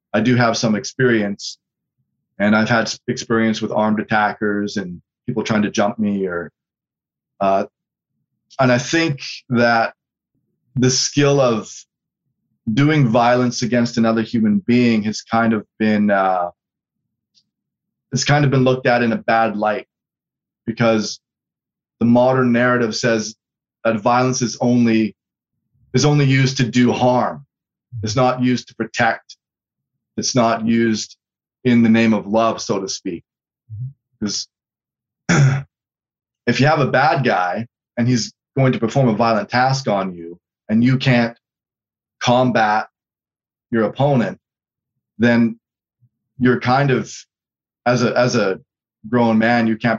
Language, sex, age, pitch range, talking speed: English, male, 20-39, 110-125 Hz, 135 wpm